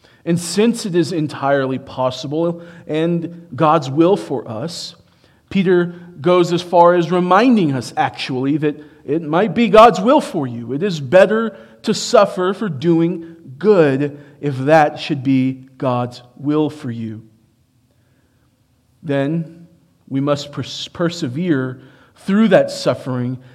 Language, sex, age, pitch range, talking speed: English, male, 40-59, 135-180 Hz, 125 wpm